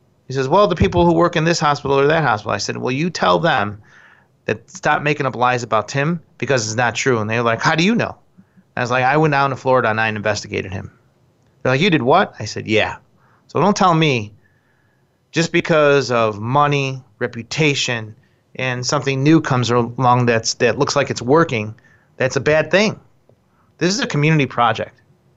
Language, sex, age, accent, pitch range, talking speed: English, male, 30-49, American, 120-155 Hz, 205 wpm